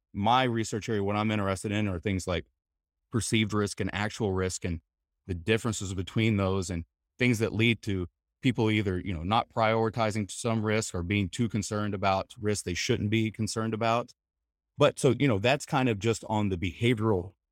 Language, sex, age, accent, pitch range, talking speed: English, male, 30-49, American, 90-115 Hz, 190 wpm